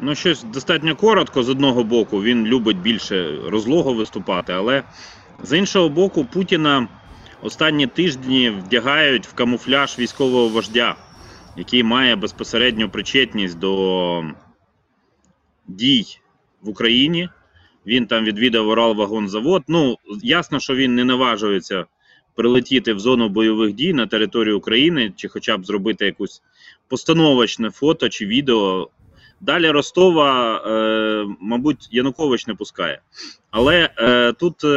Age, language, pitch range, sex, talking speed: 20-39, Ukrainian, 110-155 Hz, male, 115 wpm